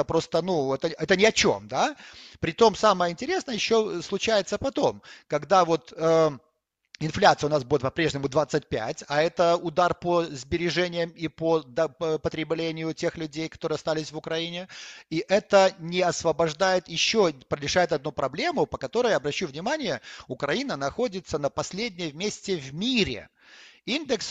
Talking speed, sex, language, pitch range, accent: 140 wpm, male, Ukrainian, 145-185 Hz, native